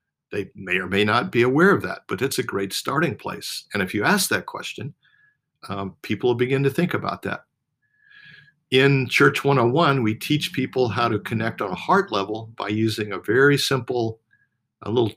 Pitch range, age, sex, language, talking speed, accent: 105-135 Hz, 50-69, male, English, 190 wpm, American